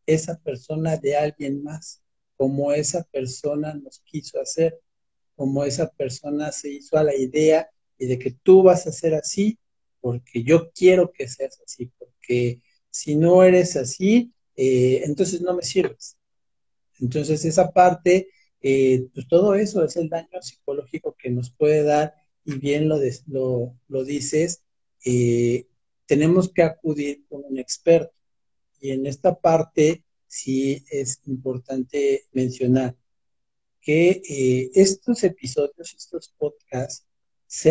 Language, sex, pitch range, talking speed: Spanish, male, 135-170 Hz, 135 wpm